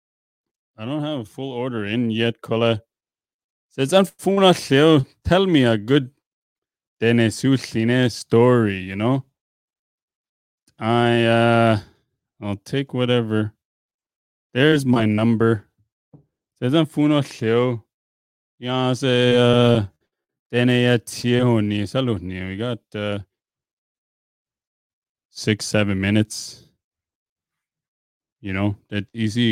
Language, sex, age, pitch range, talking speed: English, male, 20-39, 100-125 Hz, 70 wpm